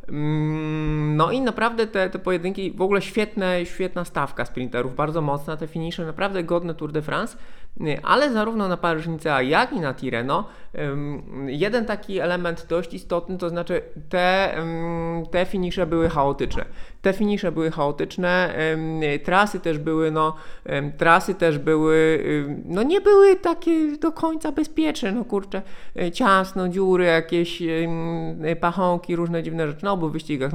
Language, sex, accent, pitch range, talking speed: Polish, male, native, 145-185 Hz, 130 wpm